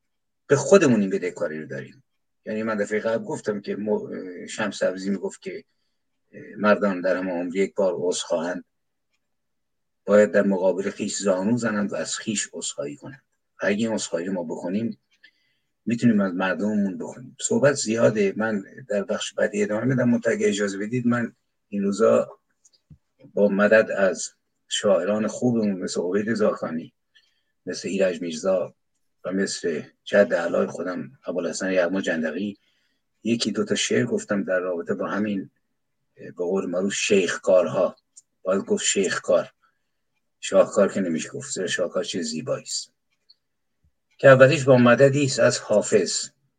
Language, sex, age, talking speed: Persian, male, 50-69, 135 wpm